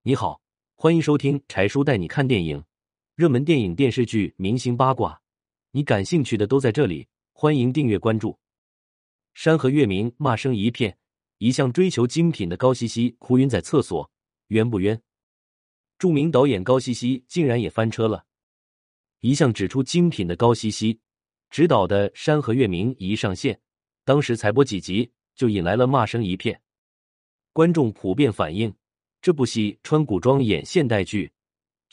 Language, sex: Chinese, male